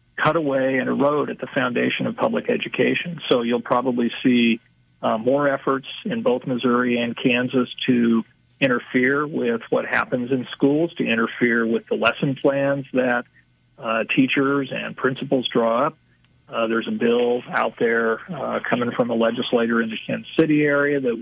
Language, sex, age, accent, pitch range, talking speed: English, male, 40-59, American, 115-145 Hz, 165 wpm